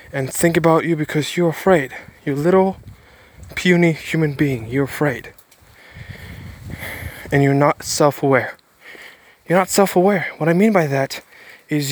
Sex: male